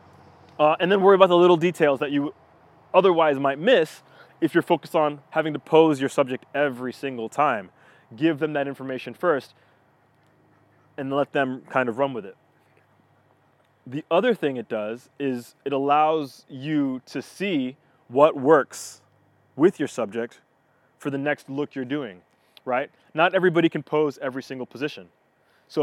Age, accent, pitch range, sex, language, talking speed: 20-39, American, 130-160 Hz, male, English, 160 wpm